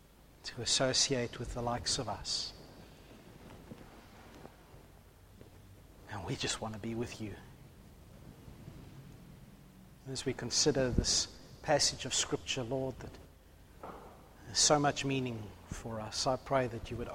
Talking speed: 120 wpm